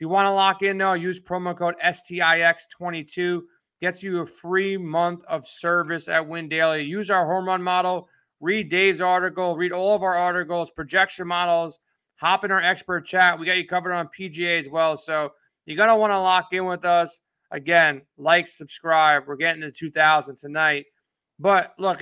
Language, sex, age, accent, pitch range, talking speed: English, male, 30-49, American, 165-185 Hz, 185 wpm